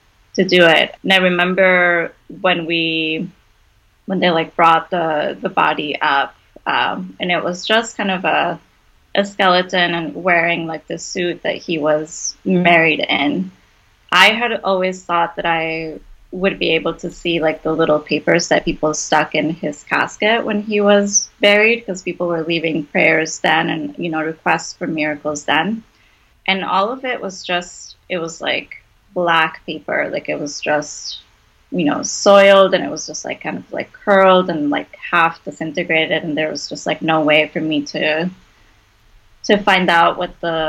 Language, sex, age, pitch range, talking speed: English, female, 20-39, 155-190 Hz, 175 wpm